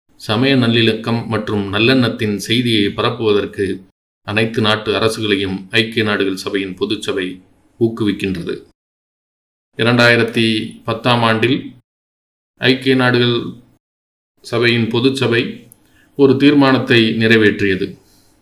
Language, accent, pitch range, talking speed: English, Indian, 105-125 Hz, 80 wpm